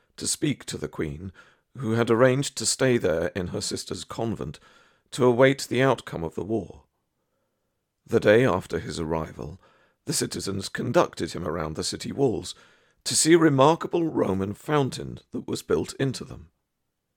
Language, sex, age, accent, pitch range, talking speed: English, male, 50-69, British, 95-125 Hz, 160 wpm